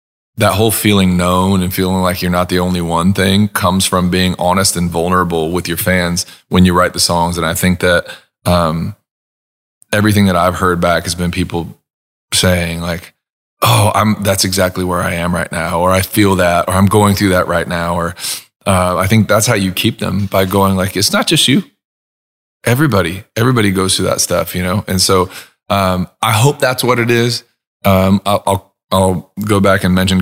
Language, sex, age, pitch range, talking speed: English, male, 20-39, 90-95 Hz, 205 wpm